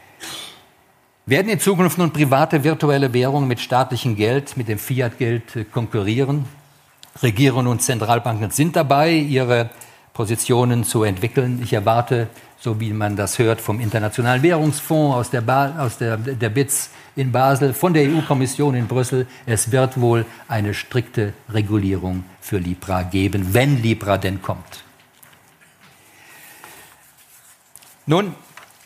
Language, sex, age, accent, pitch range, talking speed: German, male, 50-69, German, 105-135 Hz, 125 wpm